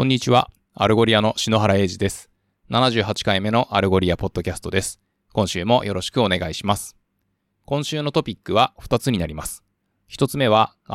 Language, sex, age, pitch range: Japanese, male, 20-39, 95-120 Hz